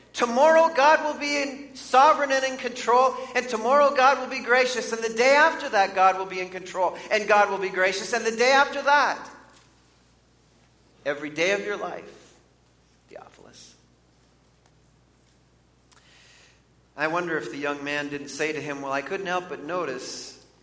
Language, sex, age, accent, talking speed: English, male, 40-59, American, 165 wpm